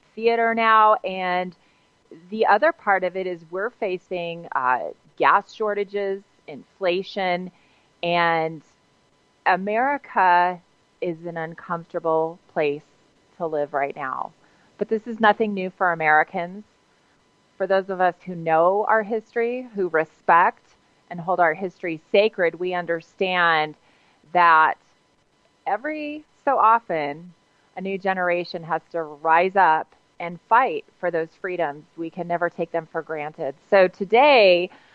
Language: English